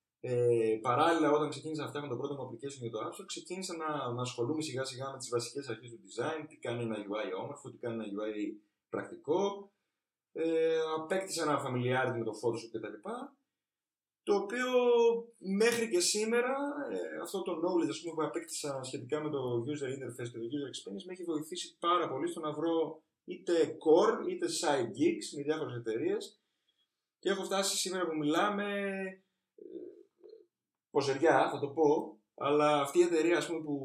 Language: Greek